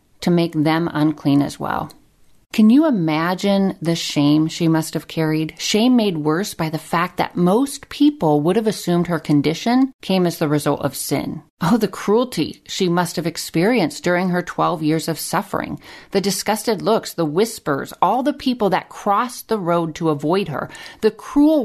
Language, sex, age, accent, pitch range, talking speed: English, female, 40-59, American, 155-205 Hz, 180 wpm